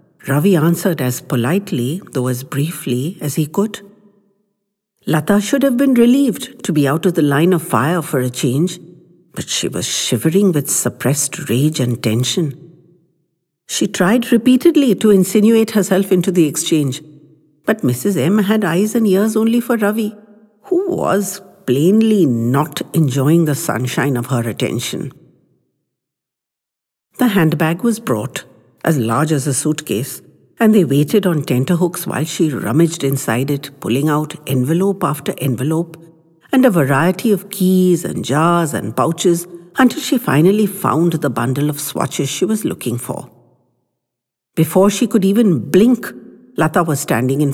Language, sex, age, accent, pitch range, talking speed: English, female, 60-79, Indian, 140-205 Hz, 150 wpm